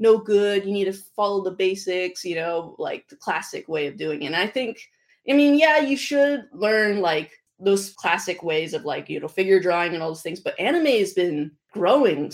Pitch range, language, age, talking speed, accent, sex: 170-230 Hz, English, 20-39, 220 wpm, American, female